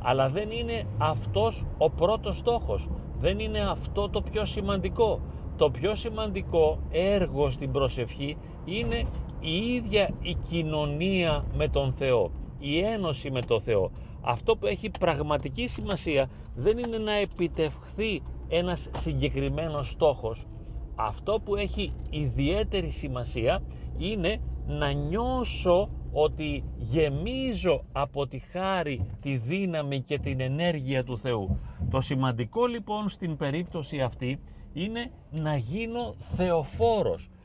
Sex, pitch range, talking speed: male, 125-180 Hz, 120 wpm